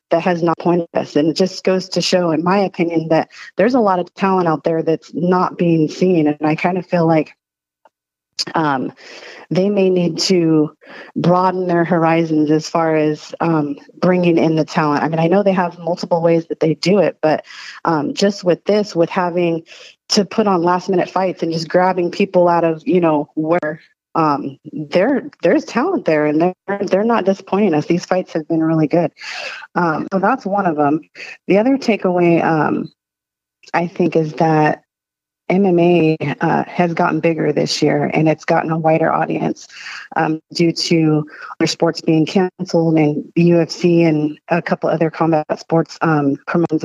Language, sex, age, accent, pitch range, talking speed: English, female, 30-49, American, 155-180 Hz, 185 wpm